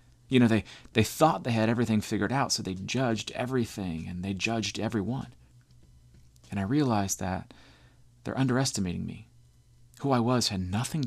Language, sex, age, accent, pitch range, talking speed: English, male, 40-59, American, 110-125 Hz, 165 wpm